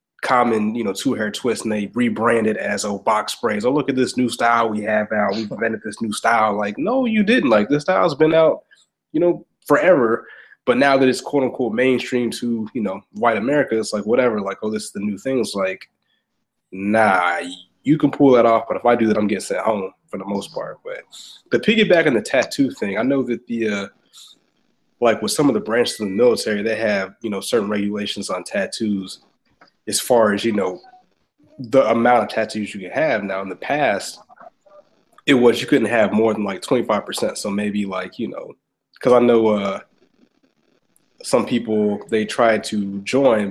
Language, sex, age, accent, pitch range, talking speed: English, male, 20-39, American, 105-130 Hz, 210 wpm